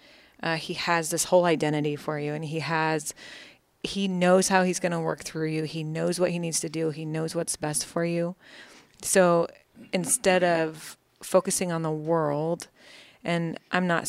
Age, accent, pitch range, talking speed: 30-49, American, 155-175 Hz, 185 wpm